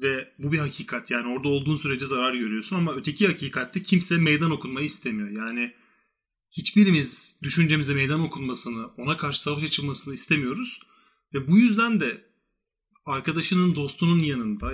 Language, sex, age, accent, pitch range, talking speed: Turkish, male, 30-49, native, 140-190 Hz, 140 wpm